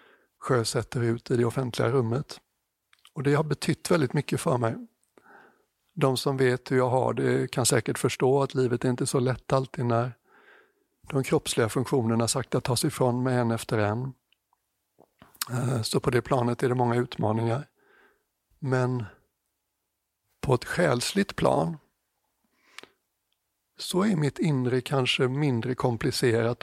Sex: male